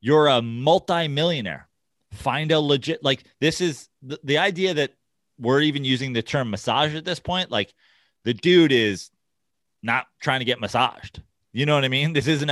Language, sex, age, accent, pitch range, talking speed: English, male, 30-49, American, 115-155 Hz, 175 wpm